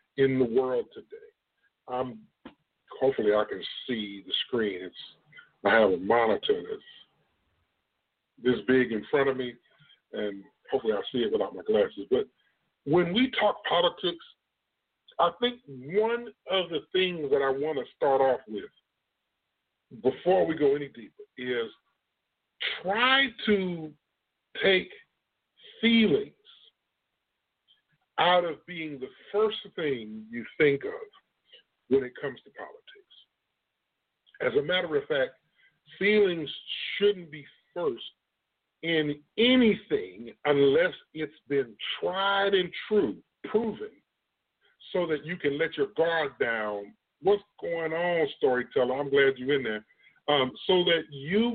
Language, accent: English, American